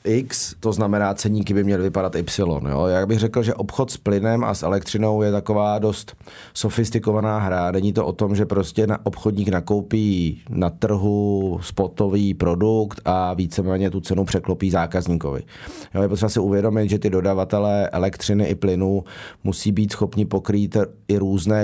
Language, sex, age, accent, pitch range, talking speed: Czech, male, 30-49, native, 95-110 Hz, 165 wpm